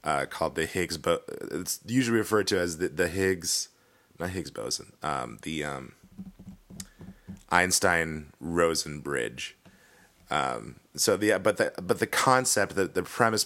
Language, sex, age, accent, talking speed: English, male, 30-49, American, 150 wpm